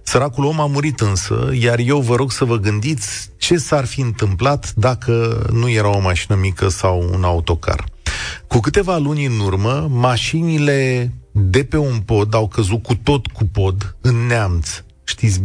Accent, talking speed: native, 170 wpm